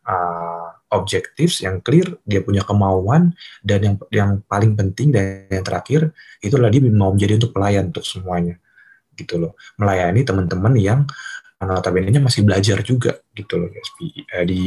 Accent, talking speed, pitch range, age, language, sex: native, 155 wpm, 95-120 Hz, 20-39, Indonesian, male